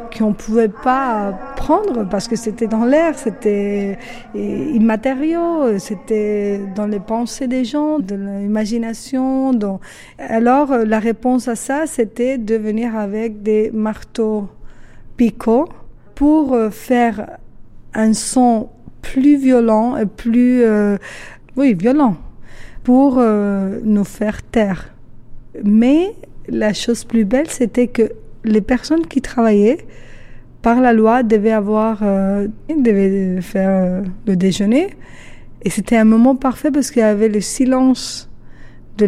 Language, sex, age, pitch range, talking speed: French, female, 50-69, 205-250 Hz, 125 wpm